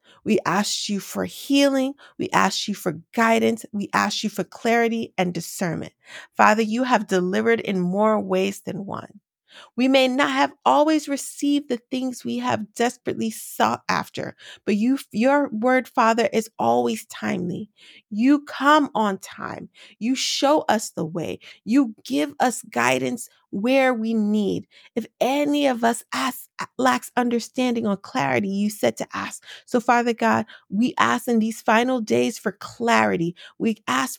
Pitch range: 210-255 Hz